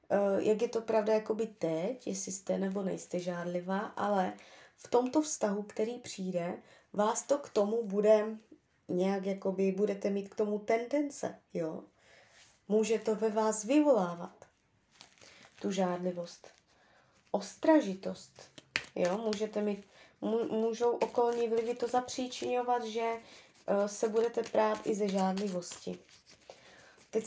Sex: female